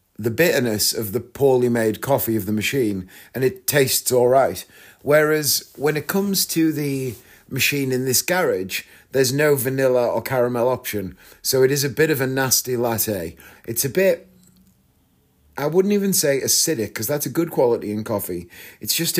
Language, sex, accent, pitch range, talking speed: English, male, British, 110-150 Hz, 180 wpm